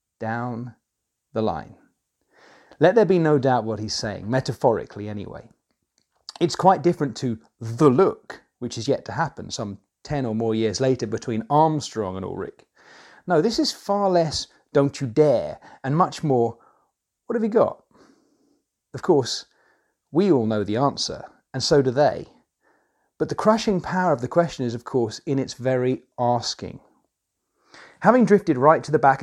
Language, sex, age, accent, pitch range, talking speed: English, male, 40-59, British, 115-160 Hz, 165 wpm